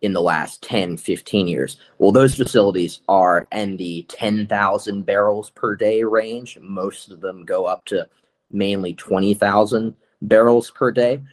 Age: 20-39